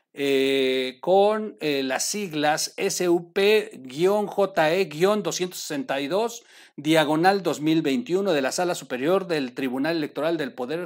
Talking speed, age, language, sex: 95 wpm, 50-69, Spanish, male